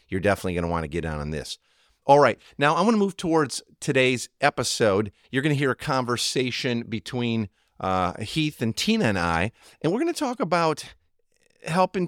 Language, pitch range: English, 95-160 Hz